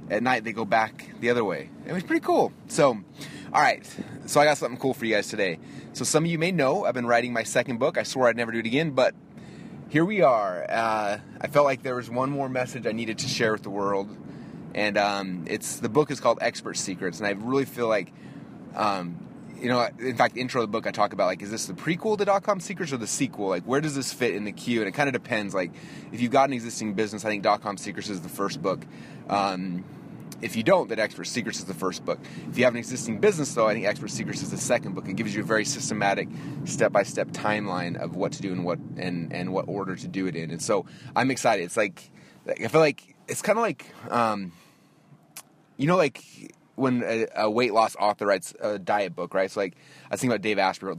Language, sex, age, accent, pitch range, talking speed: English, male, 30-49, American, 105-135 Hz, 255 wpm